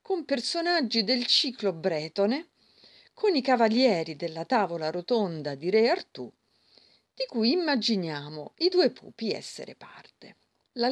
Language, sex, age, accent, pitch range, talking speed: Italian, female, 40-59, native, 175-260 Hz, 125 wpm